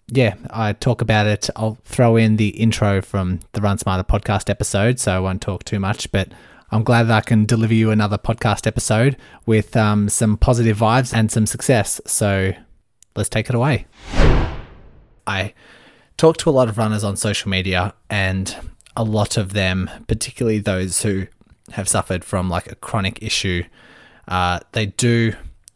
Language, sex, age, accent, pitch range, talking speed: English, male, 20-39, Australian, 95-115 Hz, 170 wpm